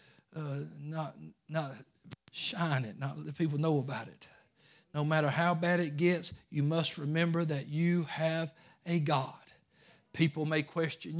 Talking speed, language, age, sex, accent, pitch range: 150 wpm, English, 60-79, male, American, 135-160 Hz